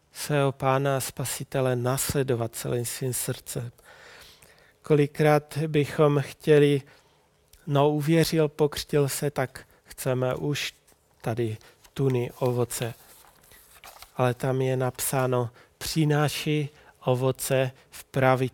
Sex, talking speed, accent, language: male, 90 wpm, native, Czech